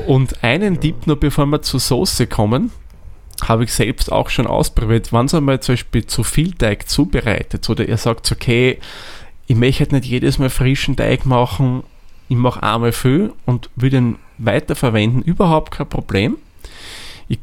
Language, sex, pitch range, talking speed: German, male, 105-135 Hz, 165 wpm